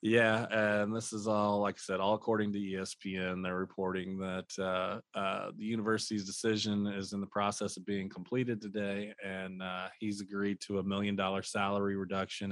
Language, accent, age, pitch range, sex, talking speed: English, American, 20-39, 90-100 Hz, male, 180 wpm